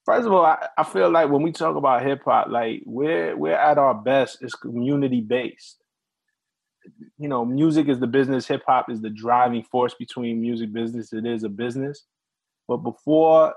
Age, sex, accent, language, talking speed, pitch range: 20-39, male, American, English, 190 wpm, 125-180 Hz